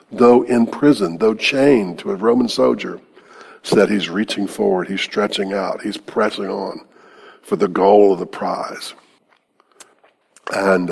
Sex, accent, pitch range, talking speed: male, American, 100-145 Hz, 150 wpm